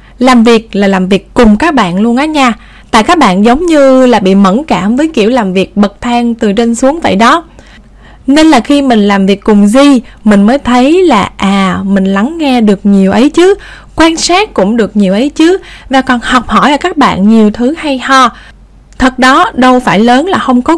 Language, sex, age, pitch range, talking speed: Vietnamese, female, 10-29, 210-280 Hz, 220 wpm